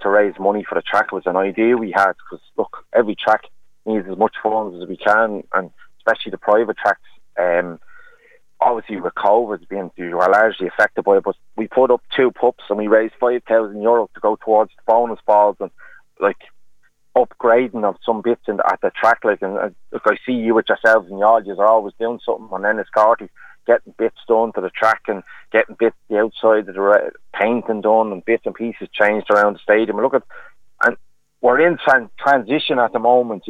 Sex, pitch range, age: male, 105-120 Hz, 20-39